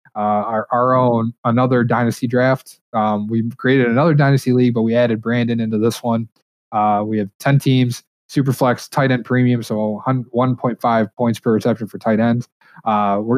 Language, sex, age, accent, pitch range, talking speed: English, male, 20-39, American, 115-130 Hz, 180 wpm